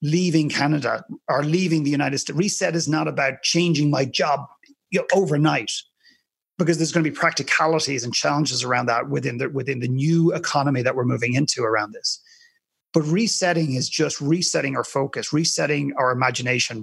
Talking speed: 165 wpm